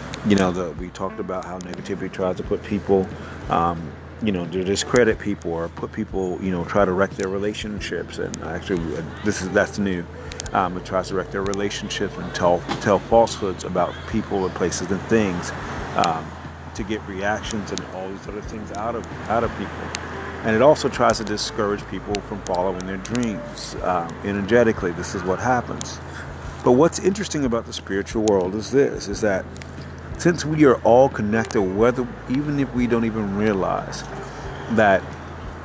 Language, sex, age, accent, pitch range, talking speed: English, male, 40-59, American, 85-110 Hz, 175 wpm